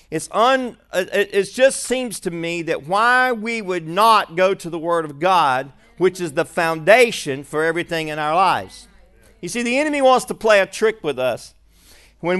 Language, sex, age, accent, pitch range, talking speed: English, male, 50-69, American, 170-220 Hz, 190 wpm